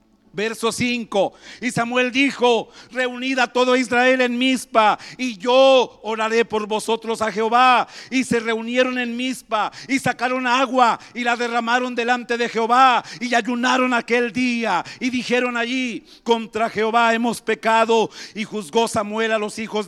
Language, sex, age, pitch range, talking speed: Spanish, male, 50-69, 210-245 Hz, 145 wpm